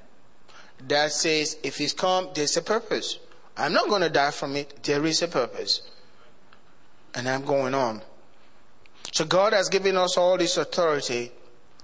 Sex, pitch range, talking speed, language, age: male, 145-185 Hz, 175 wpm, English, 30-49